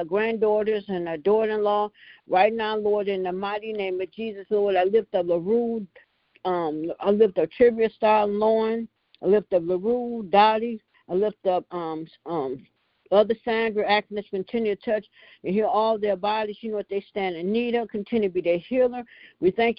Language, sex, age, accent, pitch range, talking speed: English, female, 60-79, American, 185-220 Hz, 190 wpm